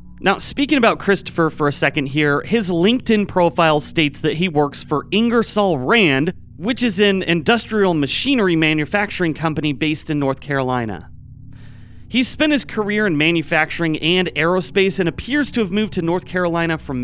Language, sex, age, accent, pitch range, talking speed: English, male, 30-49, American, 140-195 Hz, 160 wpm